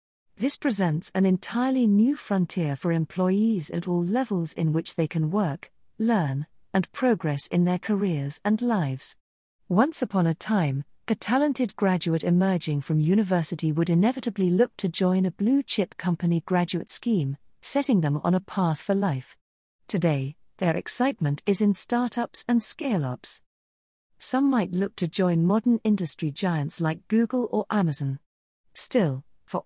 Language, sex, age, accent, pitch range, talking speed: English, female, 40-59, British, 160-215 Hz, 150 wpm